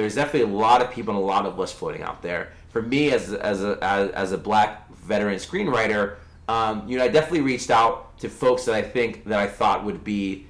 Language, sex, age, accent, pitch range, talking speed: English, male, 30-49, American, 105-130 Hz, 240 wpm